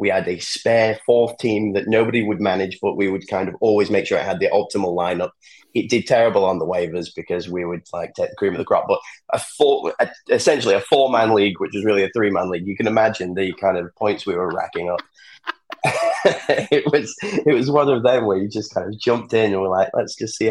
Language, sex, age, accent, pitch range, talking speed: English, male, 20-39, British, 95-120 Hz, 245 wpm